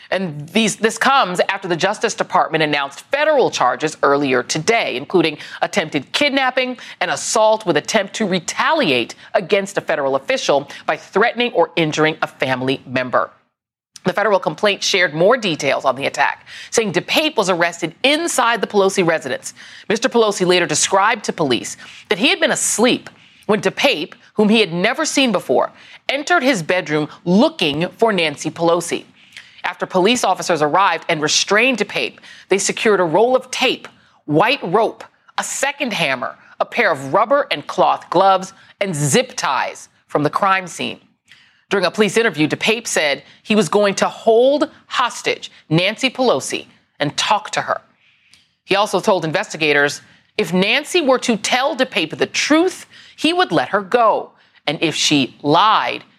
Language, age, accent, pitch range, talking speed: English, 30-49, American, 165-235 Hz, 155 wpm